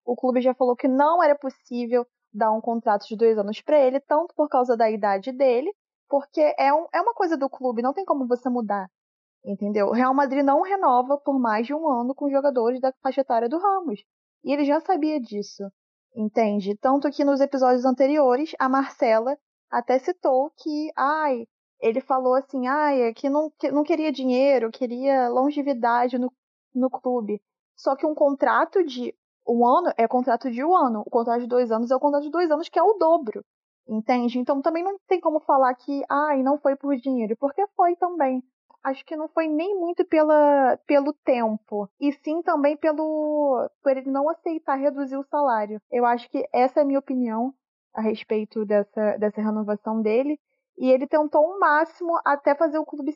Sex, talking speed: female, 195 wpm